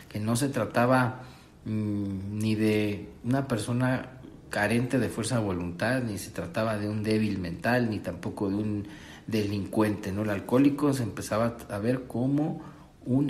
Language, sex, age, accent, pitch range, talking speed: Spanish, male, 50-69, Mexican, 105-140 Hz, 150 wpm